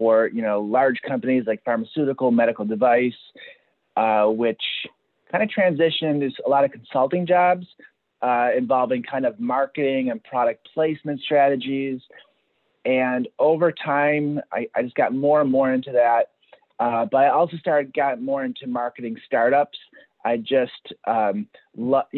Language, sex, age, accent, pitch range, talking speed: English, male, 30-49, American, 120-150 Hz, 145 wpm